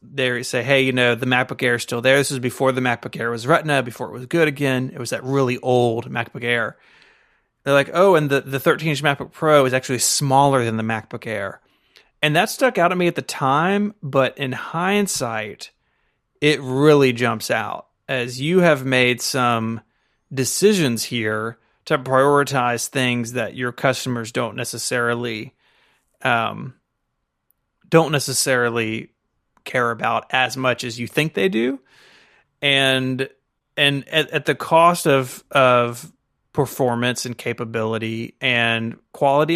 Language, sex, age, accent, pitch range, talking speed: English, male, 30-49, American, 120-145 Hz, 160 wpm